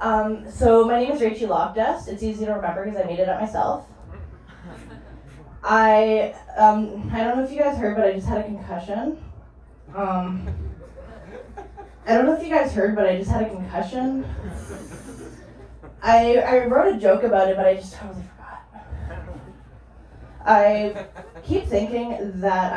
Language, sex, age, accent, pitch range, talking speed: English, female, 10-29, American, 180-225 Hz, 165 wpm